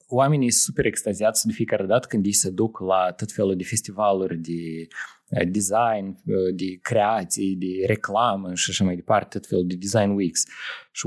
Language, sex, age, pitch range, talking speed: Romanian, male, 20-39, 100-140 Hz, 175 wpm